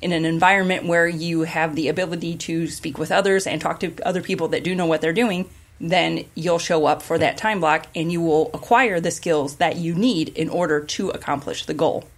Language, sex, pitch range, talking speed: English, female, 160-215 Hz, 225 wpm